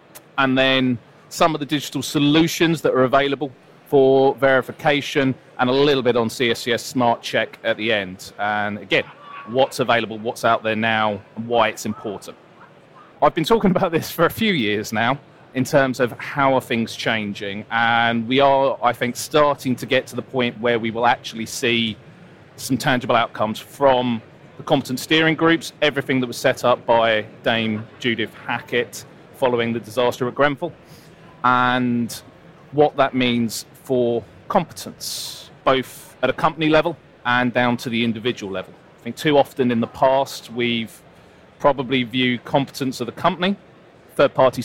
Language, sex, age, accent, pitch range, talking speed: English, male, 30-49, British, 115-145 Hz, 165 wpm